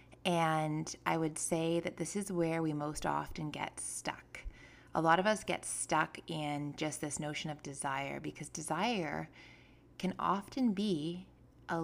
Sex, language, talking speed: female, English, 155 wpm